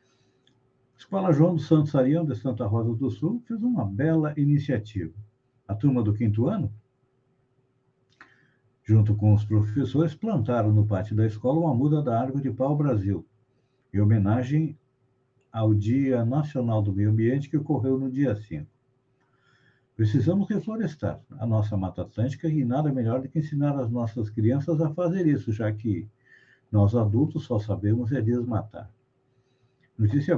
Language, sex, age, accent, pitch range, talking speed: Portuguese, male, 60-79, Brazilian, 110-140 Hz, 150 wpm